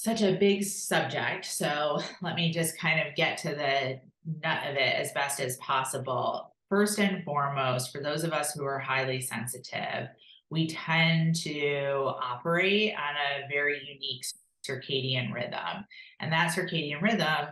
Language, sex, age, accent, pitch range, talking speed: English, female, 30-49, American, 135-165 Hz, 155 wpm